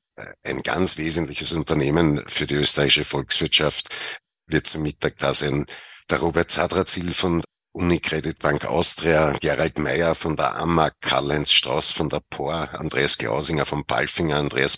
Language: German